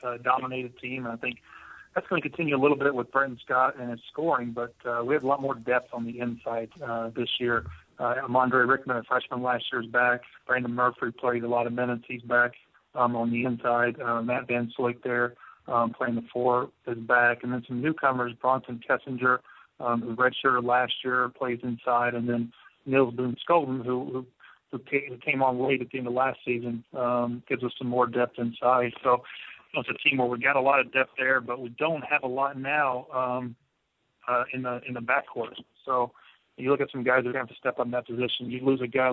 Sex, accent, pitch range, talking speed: male, American, 120-130 Hz, 225 wpm